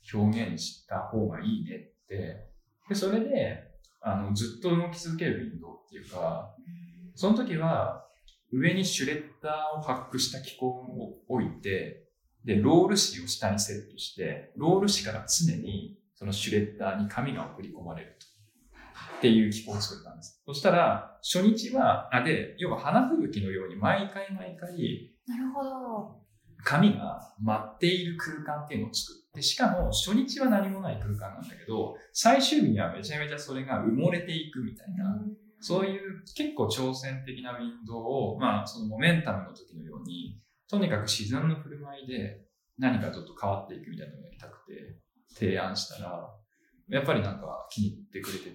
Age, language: 20-39, Japanese